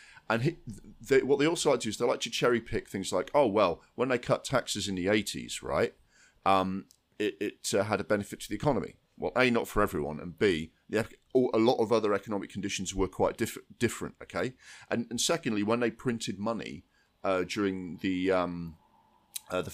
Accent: British